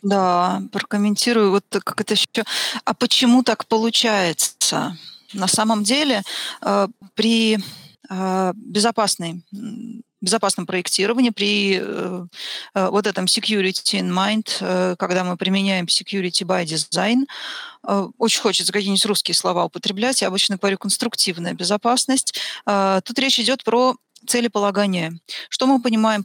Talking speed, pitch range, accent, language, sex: 125 wpm, 185-225 Hz, native, Russian, female